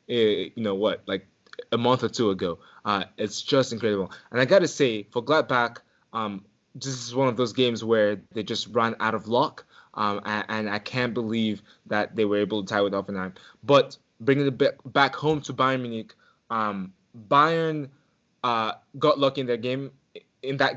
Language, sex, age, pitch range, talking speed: English, male, 20-39, 105-135 Hz, 195 wpm